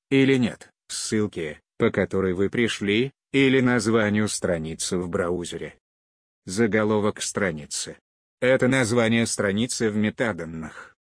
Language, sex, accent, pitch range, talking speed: Russian, male, native, 100-120 Hz, 105 wpm